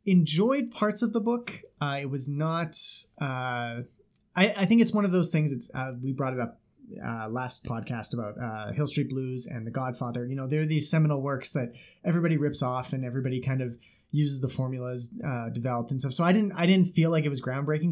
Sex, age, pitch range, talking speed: male, 30-49, 125-155 Hz, 220 wpm